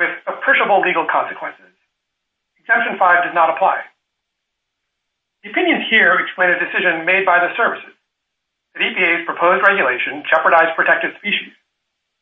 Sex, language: male, English